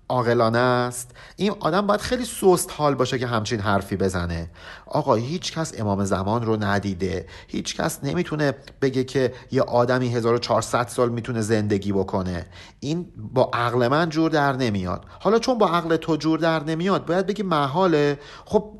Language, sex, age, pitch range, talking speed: Persian, male, 50-69, 115-185 Hz, 155 wpm